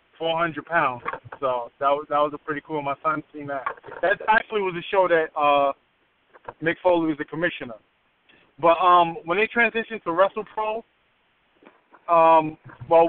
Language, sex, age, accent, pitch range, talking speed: English, male, 20-39, American, 145-175 Hz, 165 wpm